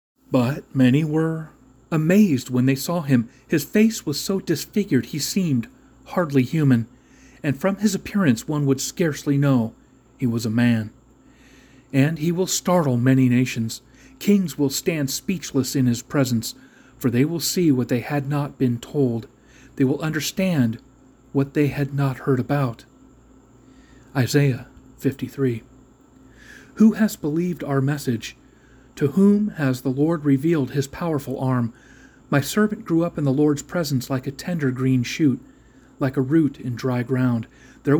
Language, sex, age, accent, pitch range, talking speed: English, male, 40-59, American, 130-155 Hz, 155 wpm